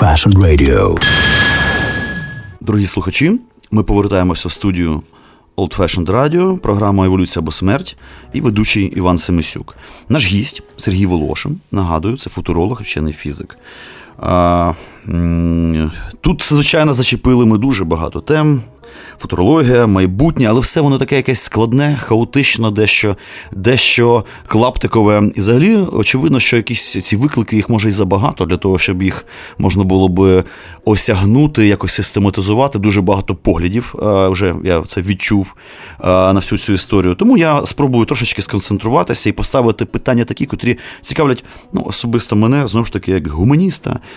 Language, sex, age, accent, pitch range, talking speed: Ukrainian, male, 30-49, native, 95-120 Hz, 135 wpm